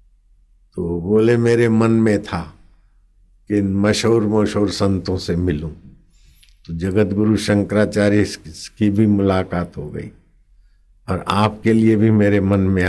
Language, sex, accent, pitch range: Hindi, male, native, 90-105 Hz